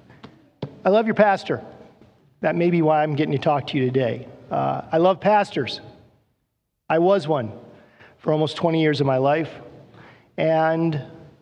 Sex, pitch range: male, 140-165 Hz